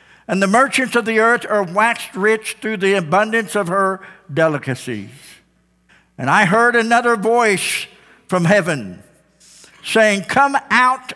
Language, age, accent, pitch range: English, 60-79, American, 175-230 Hz